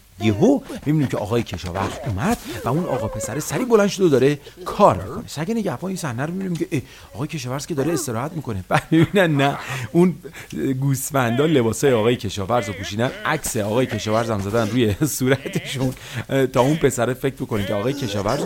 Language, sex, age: English, male, 40-59